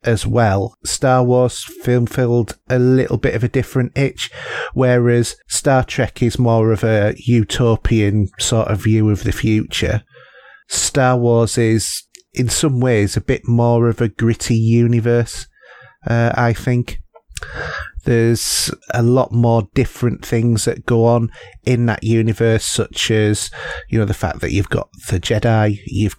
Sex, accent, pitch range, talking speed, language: male, British, 105-120 Hz, 155 wpm, English